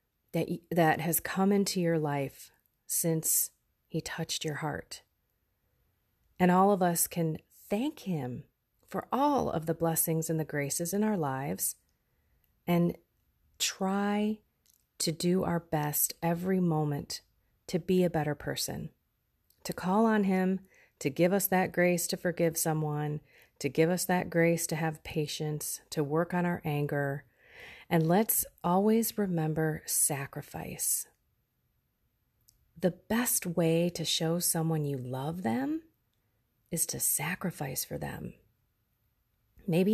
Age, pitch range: 30-49, 155-200 Hz